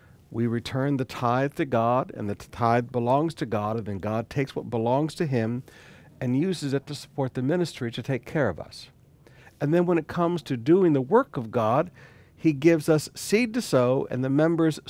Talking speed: 210 wpm